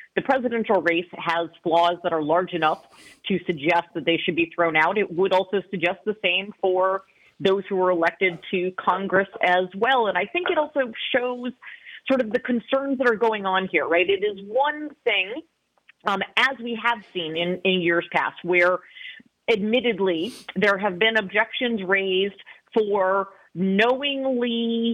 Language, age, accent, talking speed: English, 40-59, American, 170 wpm